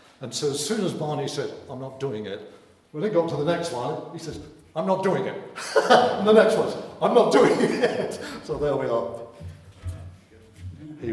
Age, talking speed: 60-79, 210 wpm